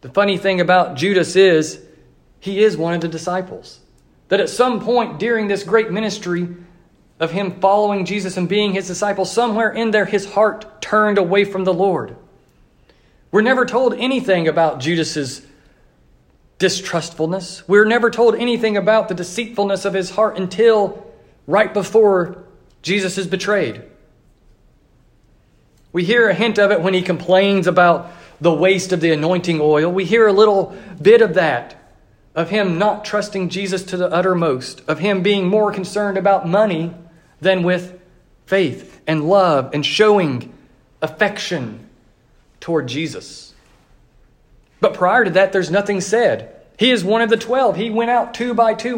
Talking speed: 155 wpm